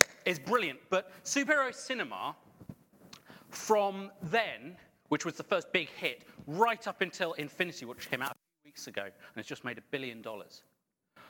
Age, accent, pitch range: 40-59, British, 140-190 Hz